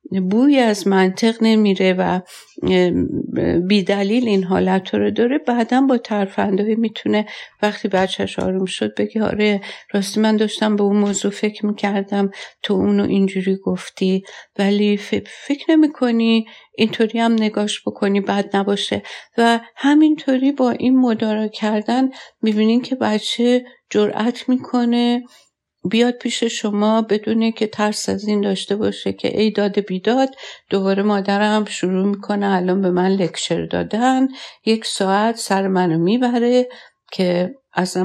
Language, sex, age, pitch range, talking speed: Persian, female, 50-69, 185-225 Hz, 130 wpm